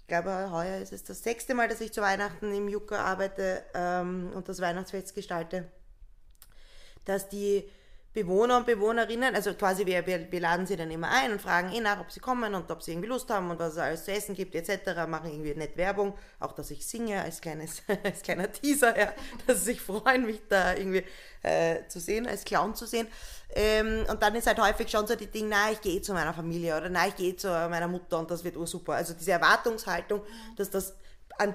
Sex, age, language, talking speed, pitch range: female, 20-39, German, 225 wpm, 175-210 Hz